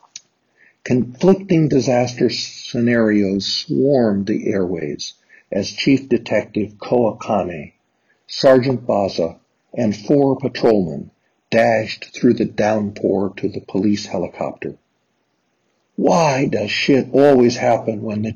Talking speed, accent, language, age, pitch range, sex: 100 wpm, American, English, 60-79, 105-125 Hz, male